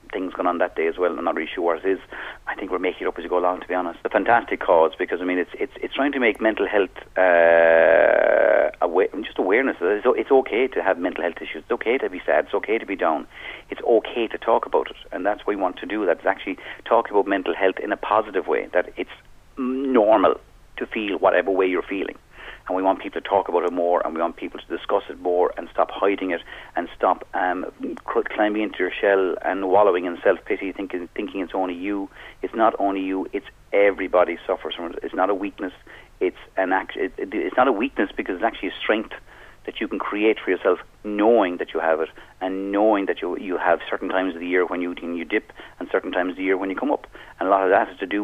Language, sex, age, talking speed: English, male, 40-59, 255 wpm